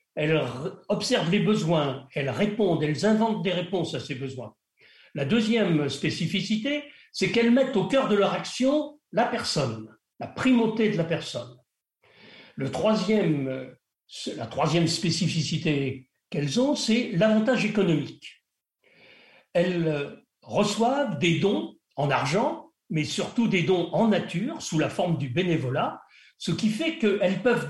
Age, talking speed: 60-79, 135 wpm